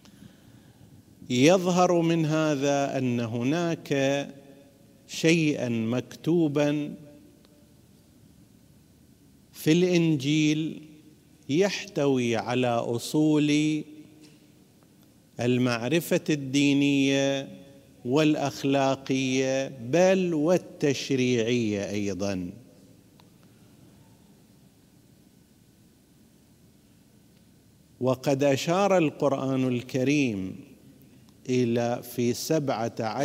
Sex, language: male, Arabic